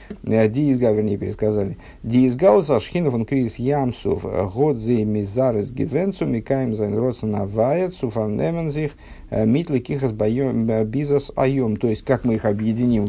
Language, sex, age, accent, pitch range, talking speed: Russian, male, 50-69, native, 100-125 Hz, 55 wpm